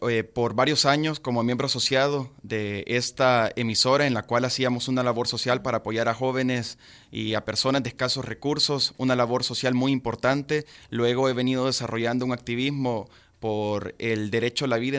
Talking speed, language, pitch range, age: 175 wpm, Spanish, 115-140 Hz, 30-49